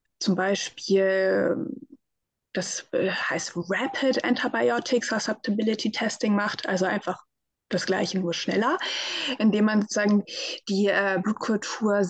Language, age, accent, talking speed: German, 20-39, German, 105 wpm